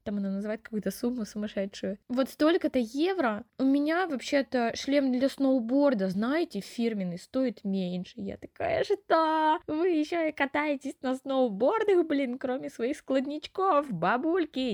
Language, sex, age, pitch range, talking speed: Russian, female, 20-39, 200-255 Hz, 140 wpm